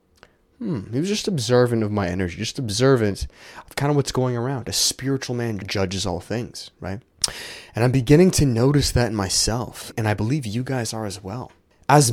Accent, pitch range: American, 100-130 Hz